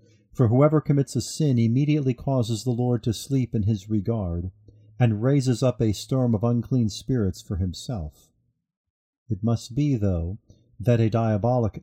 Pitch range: 100-130 Hz